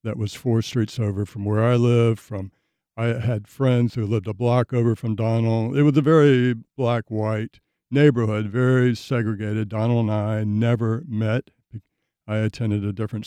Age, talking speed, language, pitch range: 60-79, 165 wpm, English, 115-135 Hz